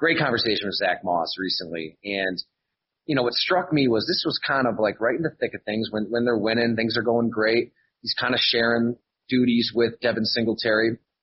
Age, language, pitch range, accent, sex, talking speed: 30-49, English, 110-130 Hz, American, male, 215 wpm